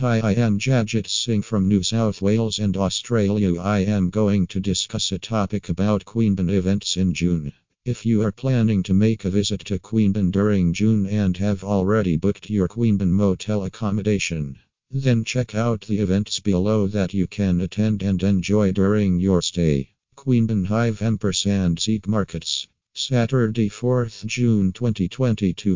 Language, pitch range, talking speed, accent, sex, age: English, 95-110 Hz, 160 wpm, American, male, 50-69